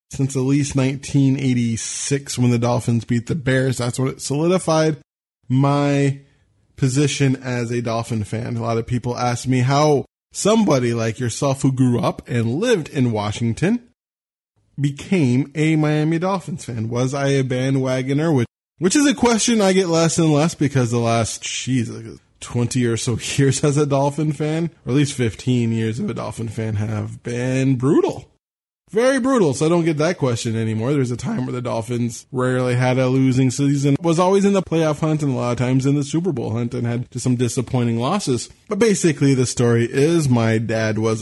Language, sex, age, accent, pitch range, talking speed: English, male, 20-39, American, 120-145 Hz, 190 wpm